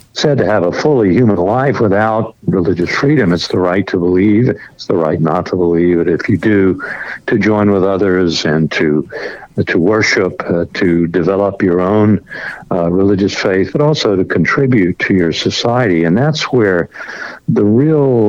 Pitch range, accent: 90-120 Hz, American